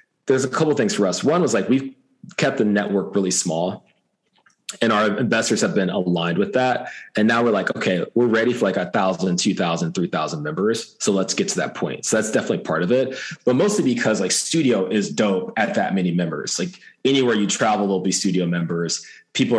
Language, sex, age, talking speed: English, male, 20-39, 210 wpm